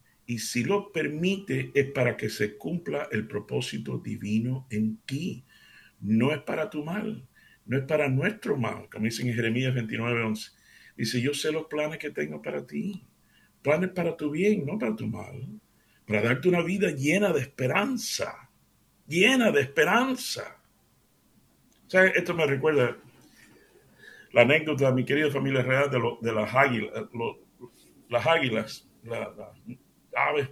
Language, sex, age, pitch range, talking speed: Spanish, male, 60-79, 115-155 Hz, 155 wpm